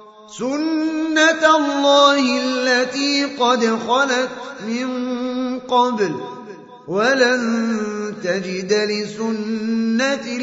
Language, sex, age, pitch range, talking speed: Indonesian, male, 30-49, 215-275 Hz, 60 wpm